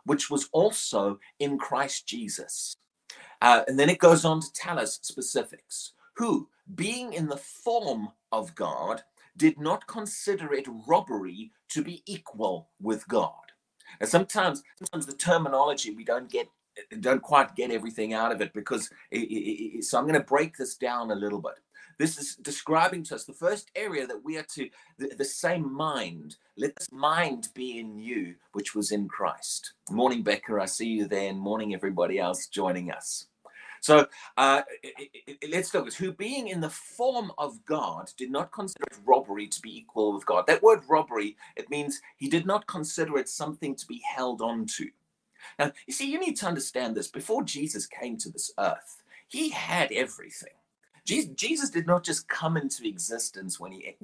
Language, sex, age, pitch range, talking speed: English, male, 30-49, 135-205 Hz, 185 wpm